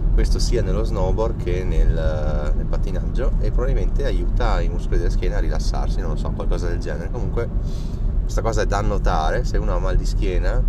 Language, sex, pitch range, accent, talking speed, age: Italian, male, 85-105 Hz, native, 195 wpm, 30-49